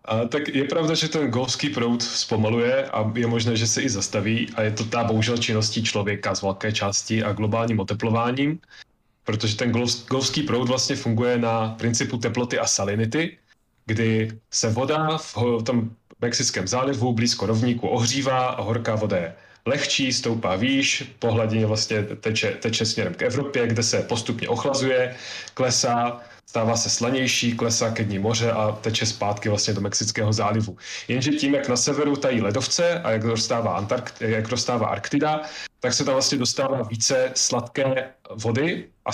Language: Czech